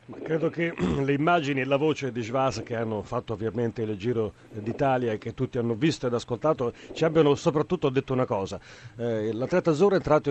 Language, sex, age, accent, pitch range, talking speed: Italian, male, 40-59, native, 125-155 Hz, 200 wpm